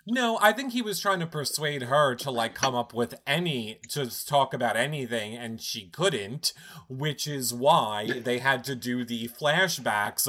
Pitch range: 120-175 Hz